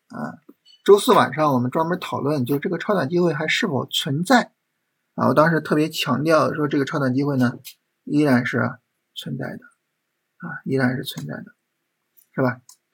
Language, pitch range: Chinese, 135-185 Hz